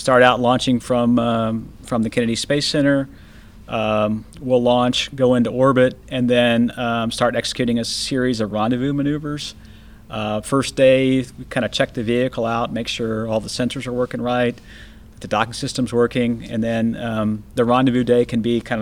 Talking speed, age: 185 wpm, 40-59